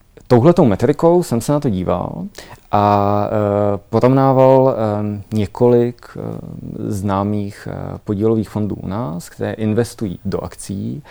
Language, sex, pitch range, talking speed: Czech, male, 95-120 Hz, 105 wpm